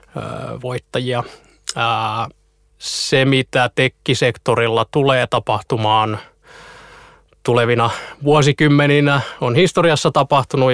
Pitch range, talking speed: 115-135 Hz, 60 wpm